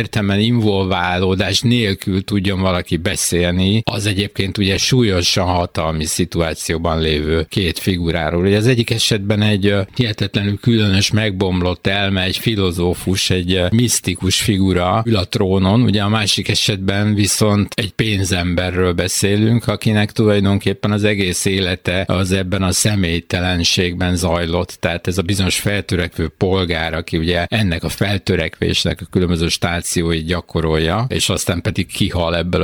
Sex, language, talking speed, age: male, Hungarian, 130 wpm, 60-79